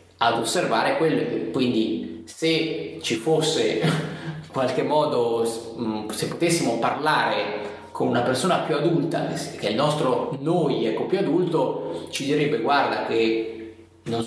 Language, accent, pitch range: Italian, native, 110-155 Hz